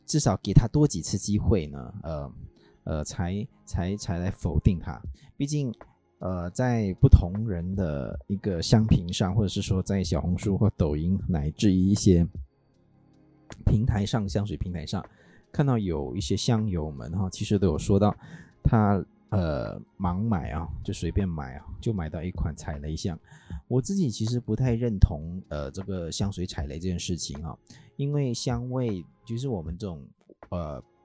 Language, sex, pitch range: Chinese, male, 85-115 Hz